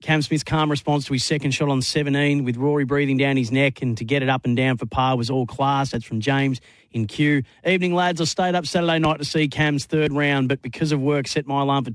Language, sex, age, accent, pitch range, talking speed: English, male, 40-59, Australian, 130-150 Hz, 265 wpm